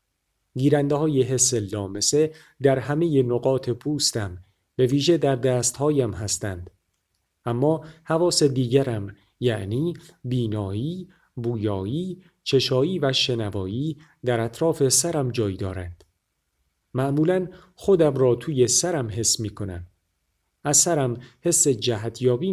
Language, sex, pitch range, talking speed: Persian, male, 110-150 Hz, 105 wpm